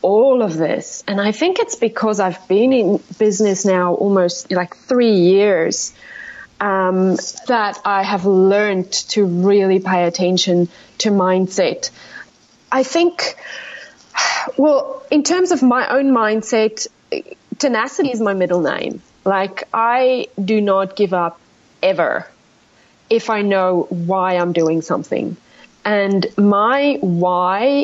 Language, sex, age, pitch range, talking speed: English, female, 30-49, 190-250 Hz, 125 wpm